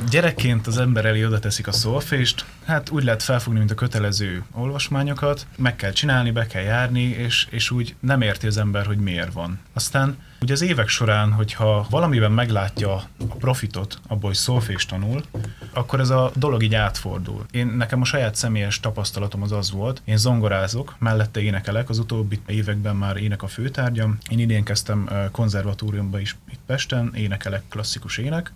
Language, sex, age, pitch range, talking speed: Hungarian, male, 30-49, 105-125 Hz, 170 wpm